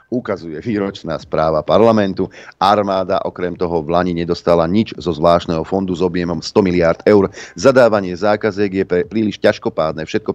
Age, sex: 40-59, male